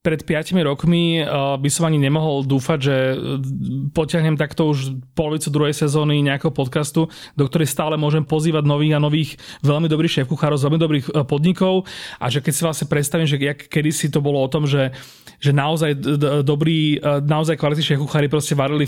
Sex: male